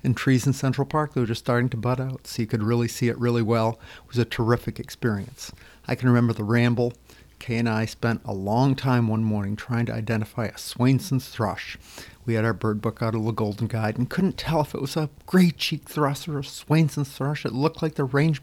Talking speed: 240 wpm